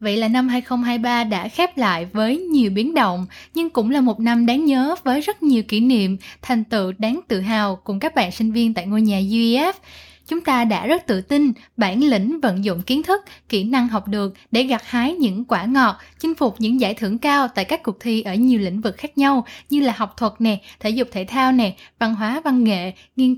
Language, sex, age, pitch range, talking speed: Vietnamese, female, 10-29, 215-265 Hz, 230 wpm